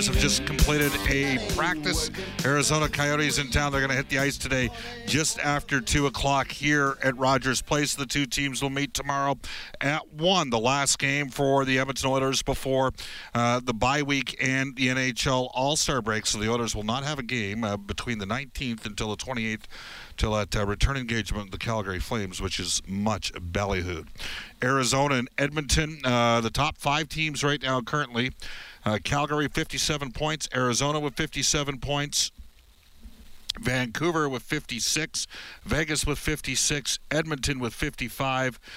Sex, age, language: male, 50-69, English